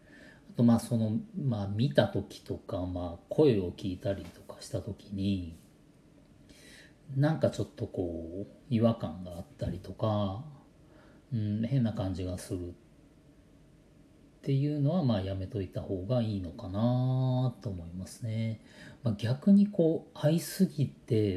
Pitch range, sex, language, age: 100-135 Hz, male, Japanese, 40-59